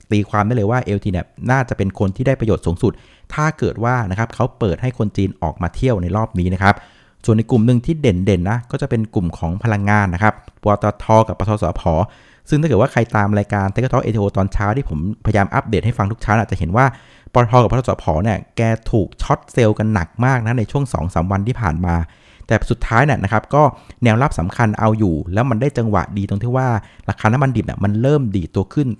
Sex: male